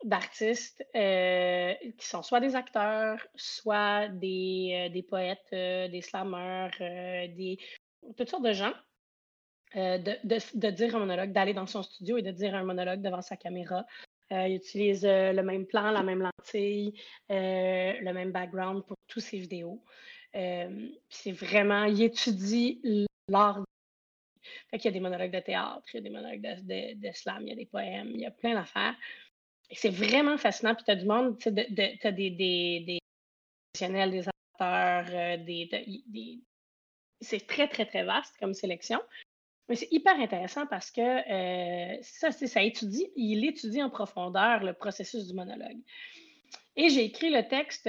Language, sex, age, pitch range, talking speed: French, female, 30-49, 185-230 Hz, 175 wpm